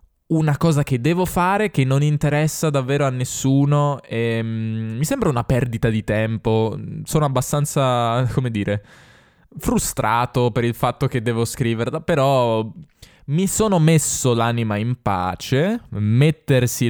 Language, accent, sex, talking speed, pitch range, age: Italian, native, male, 135 wpm, 110-140 Hz, 10-29